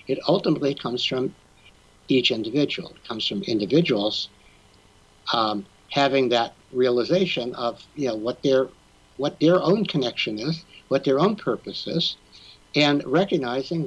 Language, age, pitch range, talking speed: English, 60-79, 110-150 Hz, 135 wpm